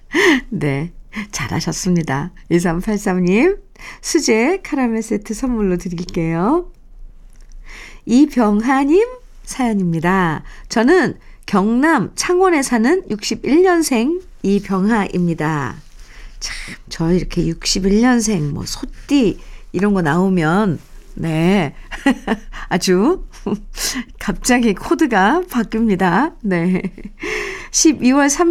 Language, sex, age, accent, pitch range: Korean, female, 50-69, native, 185-295 Hz